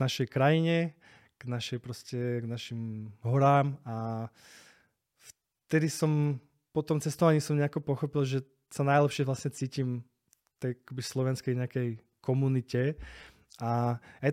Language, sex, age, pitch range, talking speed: Slovak, male, 20-39, 125-150 Hz, 115 wpm